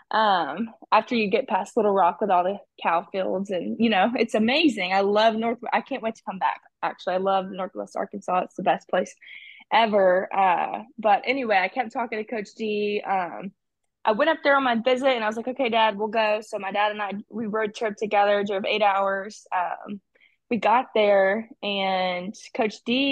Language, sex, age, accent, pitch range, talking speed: English, female, 20-39, American, 195-235 Hz, 210 wpm